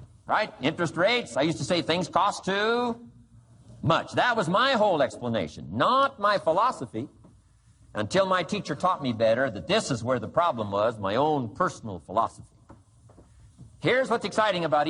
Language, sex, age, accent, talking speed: English, male, 60-79, American, 160 wpm